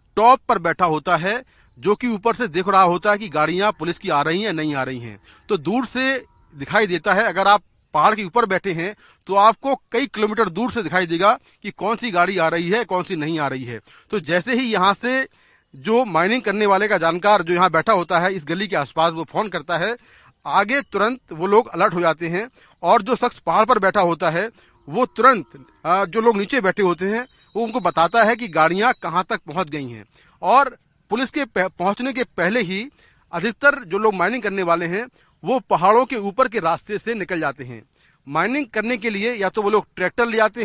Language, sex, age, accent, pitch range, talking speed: Hindi, male, 40-59, native, 170-235 Hz, 225 wpm